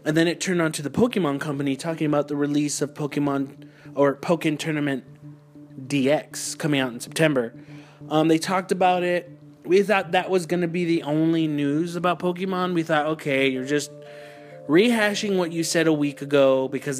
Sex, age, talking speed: male, 30-49, 185 wpm